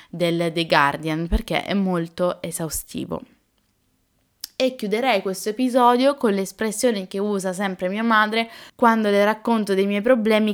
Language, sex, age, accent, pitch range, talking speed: Italian, female, 20-39, native, 170-215 Hz, 135 wpm